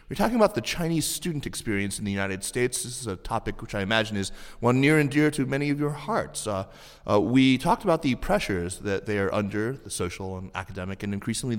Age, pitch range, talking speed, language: 30-49, 95-120 Hz, 235 wpm, English